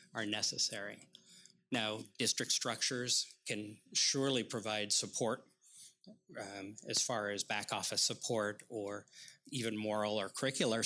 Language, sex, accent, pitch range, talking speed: English, male, American, 105-125 Hz, 115 wpm